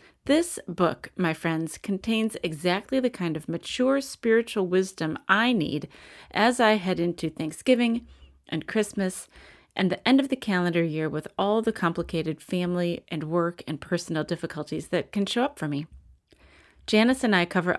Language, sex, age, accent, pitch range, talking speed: English, female, 30-49, American, 160-220 Hz, 160 wpm